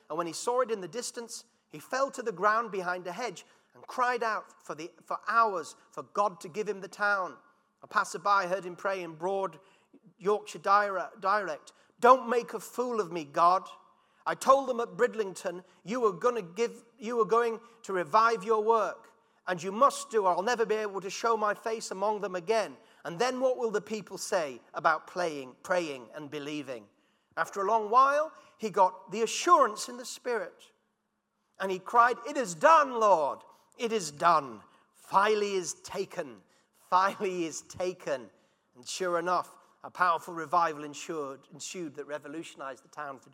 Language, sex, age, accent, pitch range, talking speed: English, male, 40-59, British, 175-235 Hz, 180 wpm